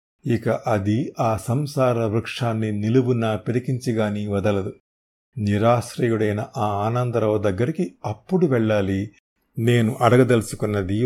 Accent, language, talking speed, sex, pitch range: native, Telugu, 80 wpm, male, 105-125 Hz